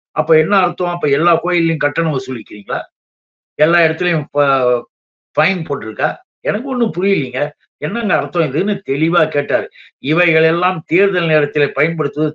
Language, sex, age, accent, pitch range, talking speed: Tamil, male, 60-79, native, 145-190 Hz, 120 wpm